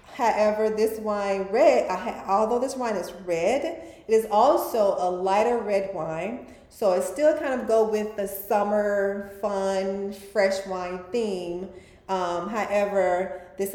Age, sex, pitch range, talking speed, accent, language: 30-49, female, 175-210 Hz, 150 wpm, American, English